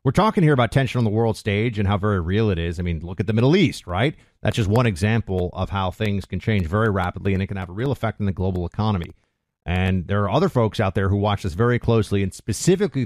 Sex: male